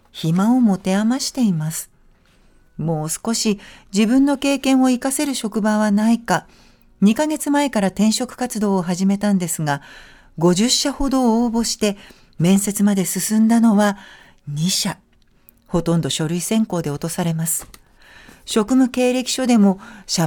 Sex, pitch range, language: female, 180-235 Hz, Japanese